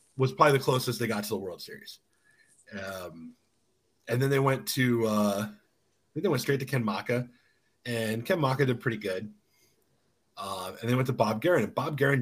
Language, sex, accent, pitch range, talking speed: English, male, American, 105-125 Hz, 200 wpm